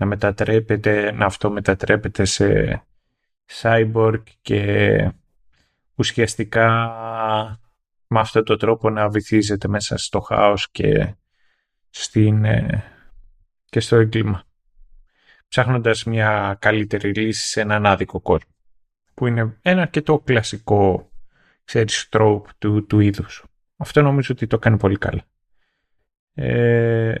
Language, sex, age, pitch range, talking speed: Greek, male, 30-49, 105-115 Hz, 105 wpm